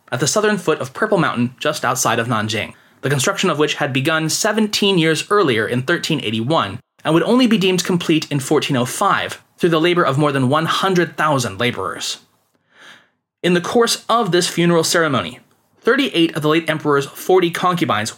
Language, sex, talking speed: English, male, 170 wpm